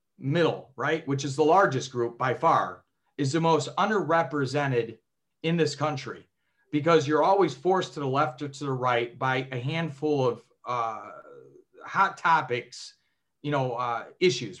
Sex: male